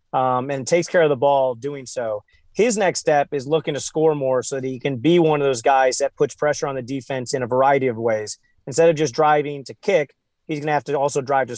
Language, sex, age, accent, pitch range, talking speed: English, male, 30-49, American, 135-165 Hz, 265 wpm